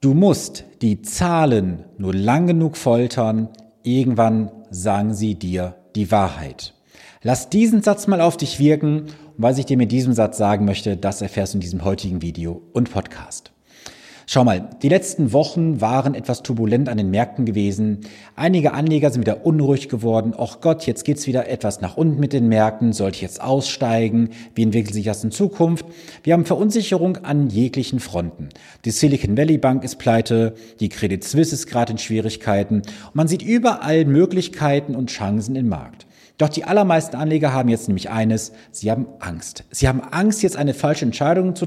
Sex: male